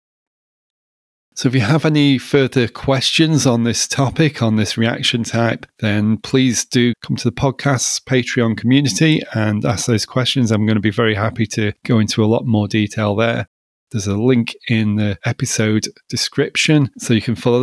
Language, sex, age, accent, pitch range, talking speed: English, male, 30-49, British, 110-135 Hz, 175 wpm